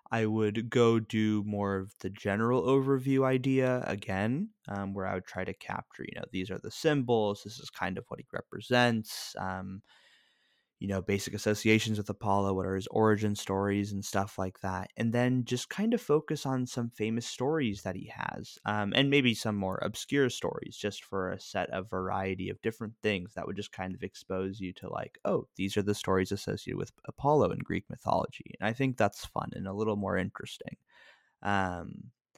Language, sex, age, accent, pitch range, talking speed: English, male, 20-39, American, 95-110 Hz, 195 wpm